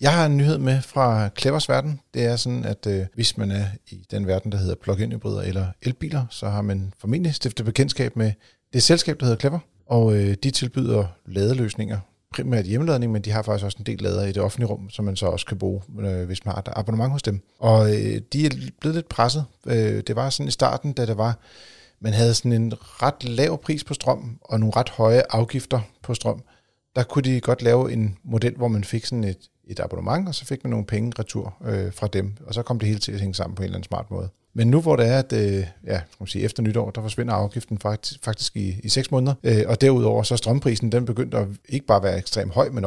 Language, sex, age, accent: Danish, male, 40-59, native